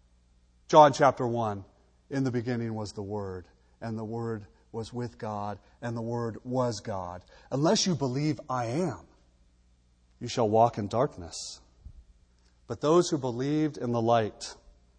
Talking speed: 150 wpm